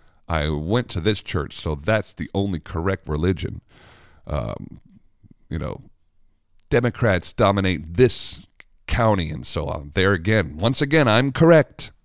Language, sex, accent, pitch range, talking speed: English, male, American, 80-105 Hz, 135 wpm